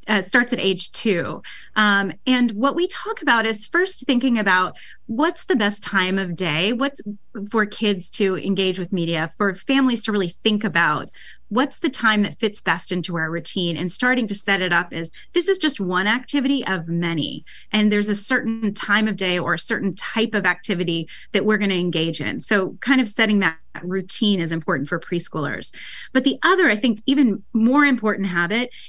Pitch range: 180-240 Hz